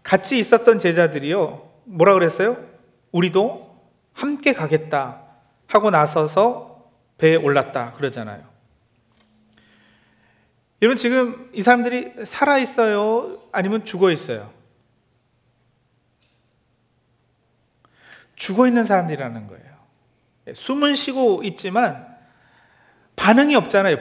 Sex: male